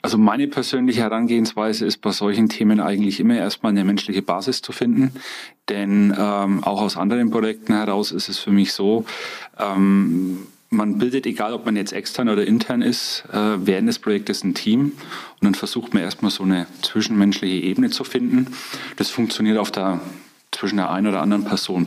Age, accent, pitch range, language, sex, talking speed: 30-49, German, 100-120 Hz, German, male, 180 wpm